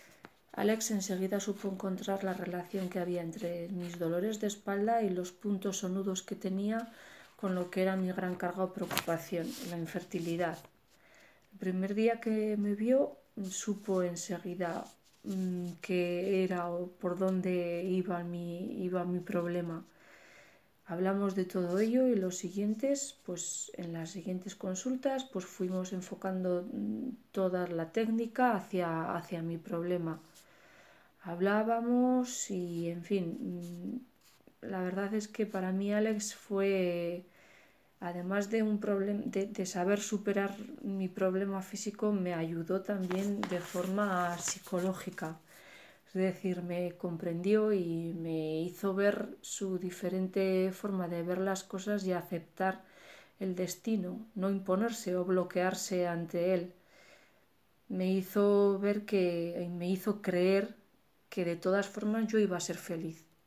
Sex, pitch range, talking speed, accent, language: female, 175-205 Hz, 130 wpm, Spanish, Spanish